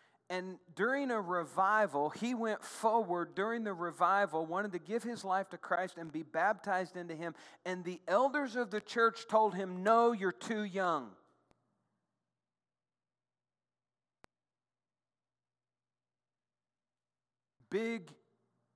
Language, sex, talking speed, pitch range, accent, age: English, male, 110 wpm, 145-210 Hz, American, 50-69